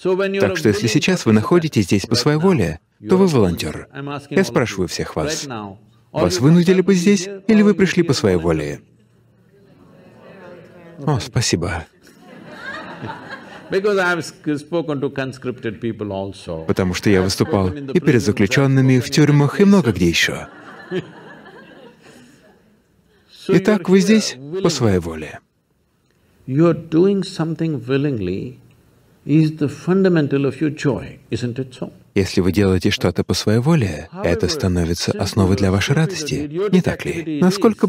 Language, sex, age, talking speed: Russian, male, 50-69, 105 wpm